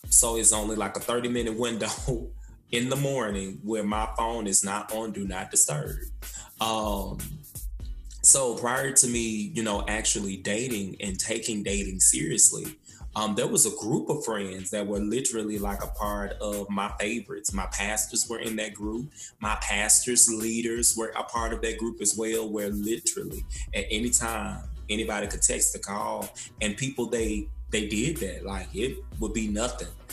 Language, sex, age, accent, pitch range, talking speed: English, male, 20-39, American, 100-115 Hz, 170 wpm